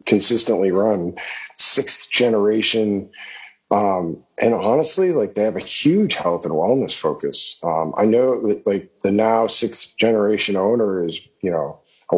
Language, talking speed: English, 150 wpm